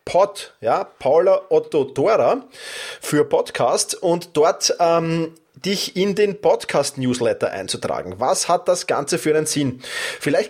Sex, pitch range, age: male, 165-250 Hz, 30-49